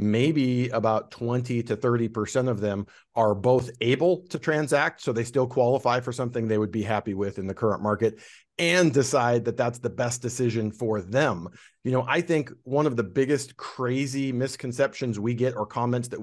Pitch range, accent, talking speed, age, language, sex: 110-135 Hz, American, 190 wpm, 40-59, English, male